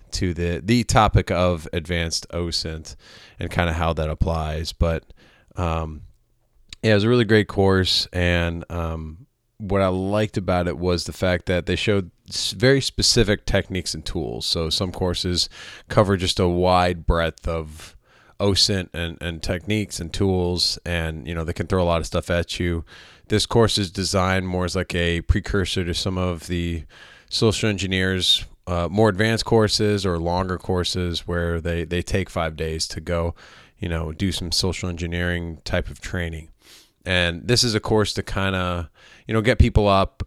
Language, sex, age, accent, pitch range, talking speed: English, male, 20-39, American, 85-100 Hz, 175 wpm